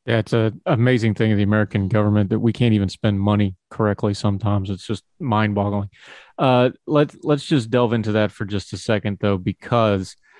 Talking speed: 185 wpm